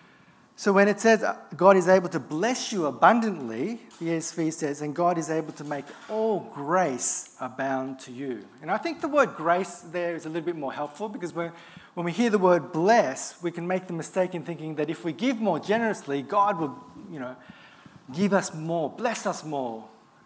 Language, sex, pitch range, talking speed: English, male, 155-215 Hz, 200 wpm